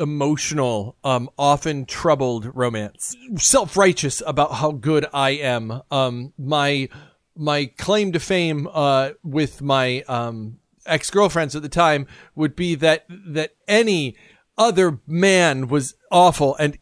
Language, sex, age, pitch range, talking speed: English, male, 40-59, 130-165 Hz, 125 wpm